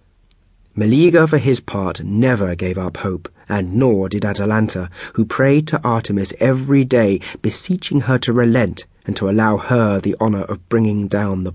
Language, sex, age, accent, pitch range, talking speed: English, male, 30-49, British, 95-120 Hz, 165 wpm